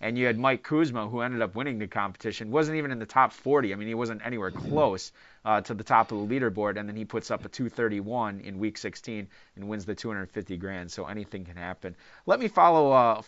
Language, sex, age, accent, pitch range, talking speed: English, male, 30-49, American, 110-140 Hz, 240 wpm